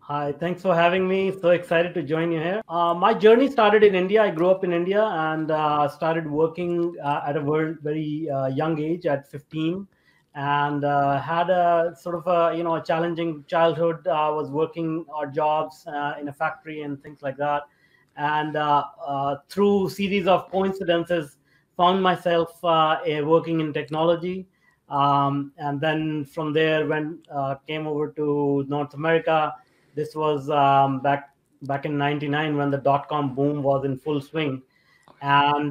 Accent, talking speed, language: Indian, 175 wpm, English